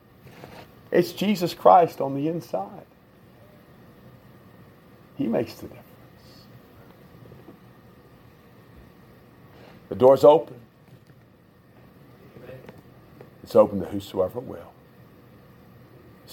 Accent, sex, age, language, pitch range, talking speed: American, male, 50-69, English, 110-145 Hz, 70 wpm